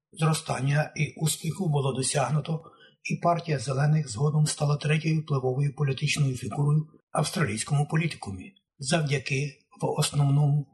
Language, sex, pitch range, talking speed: Ukrainian, male, 135-155 Hz, 105 wpm